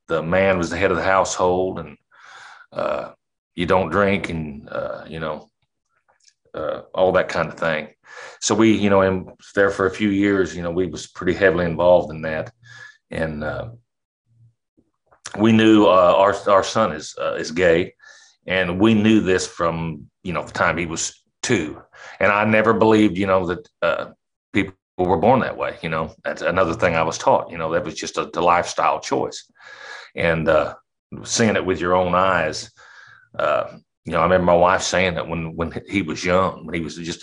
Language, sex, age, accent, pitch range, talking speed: English, male, 40-59, American, 85-110 Hz, 200 wpm